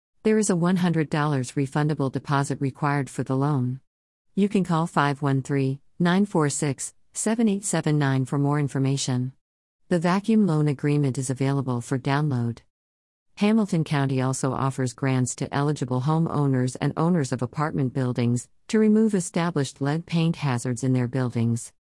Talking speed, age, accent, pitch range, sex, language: 135 wpm, 50-69, American, 130-160 Hz, female, English